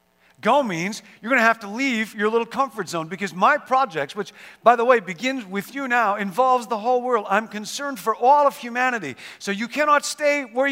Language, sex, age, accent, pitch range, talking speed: English, male, 50-69, American, 195-245 Hz, 215 wpm